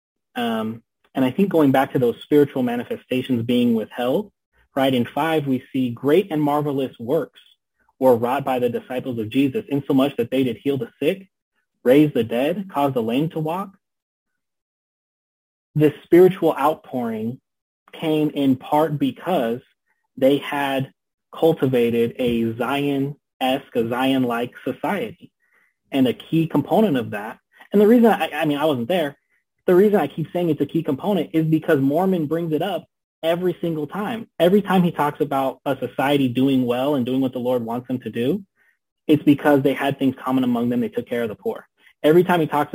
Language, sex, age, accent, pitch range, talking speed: English, male, 30-49, American, 125-165 Hz, 180 wpm